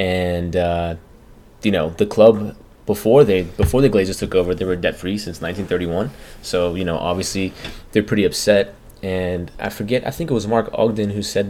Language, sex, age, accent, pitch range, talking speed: English, male, 20-39, American, 95-110 Hz, 195 wpm